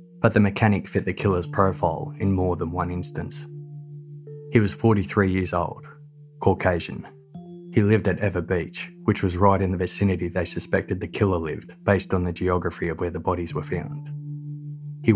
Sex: male